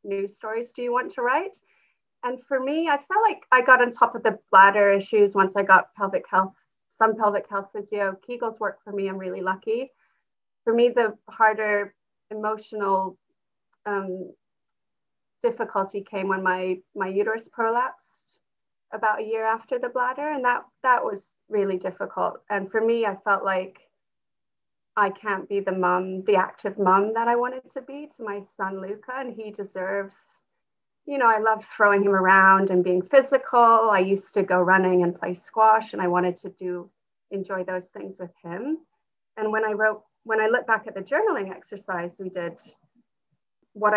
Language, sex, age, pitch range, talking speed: English, female, 30-49, 190-230 Hz, 180 wpm